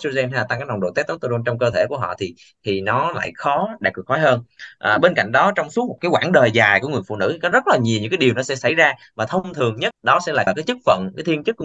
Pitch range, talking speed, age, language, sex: 110-145 Hz, 310 wpm, 20-39, Vietnamese, male